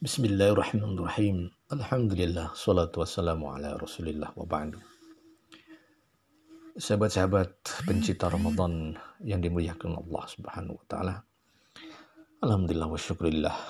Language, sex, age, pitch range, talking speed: Indonesian, male, 50-69, 85-105 Hz, 90 wpm